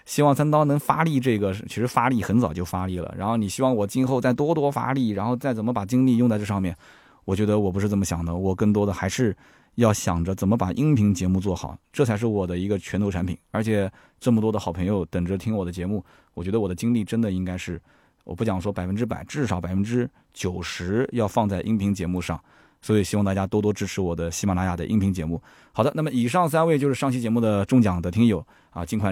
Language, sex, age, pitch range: Chinese, male, 20-39, 95-125 Hz